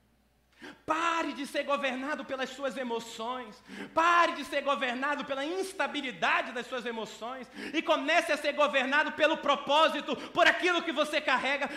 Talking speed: 145 wpm